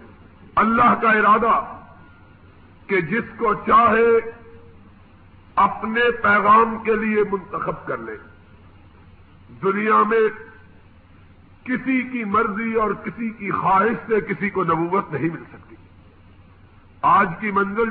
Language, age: Urdu, 50-69